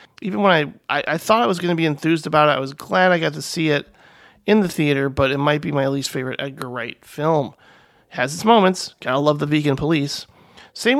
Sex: male